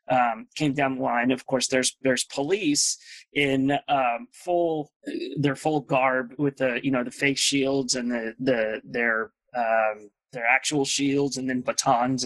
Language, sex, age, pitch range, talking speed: English, male, 20-39, 130-145 Hz, 165 wpm